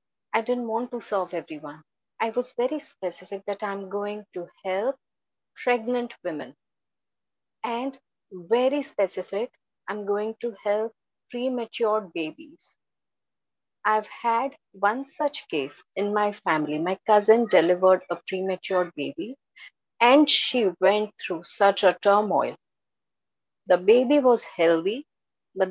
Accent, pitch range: Indian, 180-245 Hz